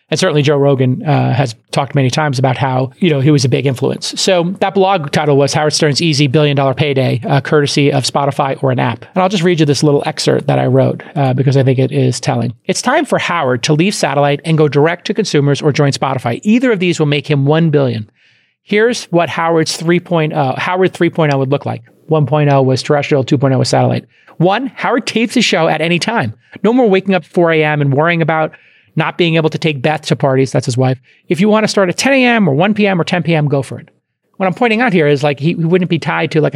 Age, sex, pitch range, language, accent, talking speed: 40-59, male, 145-180 Hz, English, American, 245 wpm